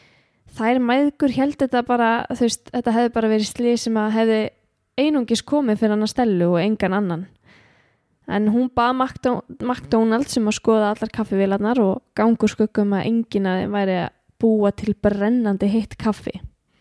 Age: 10-29